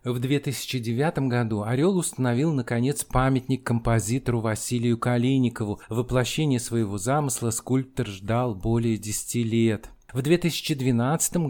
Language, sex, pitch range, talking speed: Russian, male, 115-150 Hz, 105 wpm